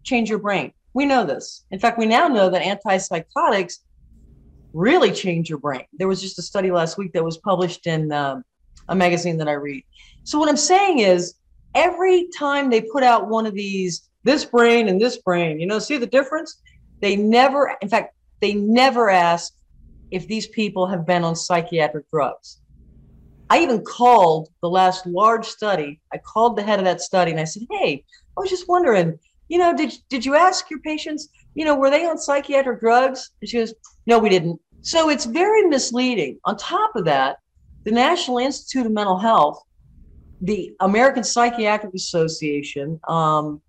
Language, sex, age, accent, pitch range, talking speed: English, female, 40-59, American, 175-270 Hz, 185 wpm